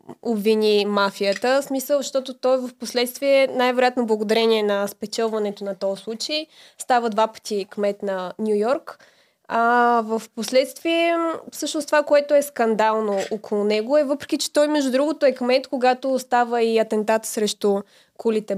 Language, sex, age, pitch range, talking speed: Bulgarian, female, 20-39, 215-265 Hz, 145 wpm